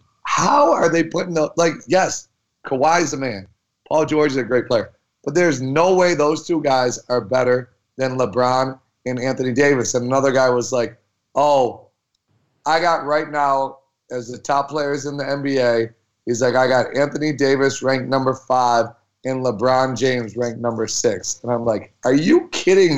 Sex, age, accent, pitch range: male, 30-49, American, 130-165 Hz